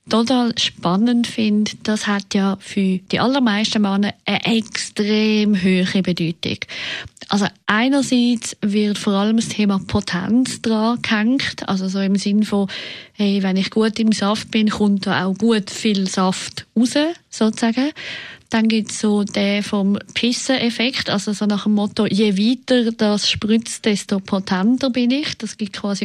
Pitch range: 200-240 Hz